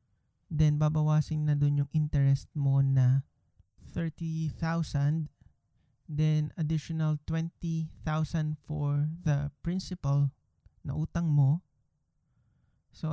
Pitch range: 130-155 Hz